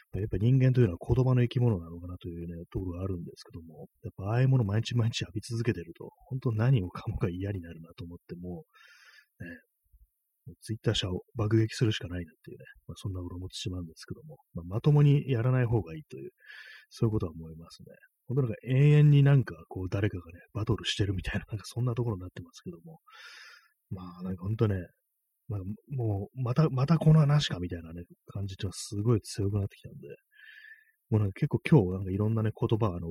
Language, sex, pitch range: Japanese, male, 95-125 Hz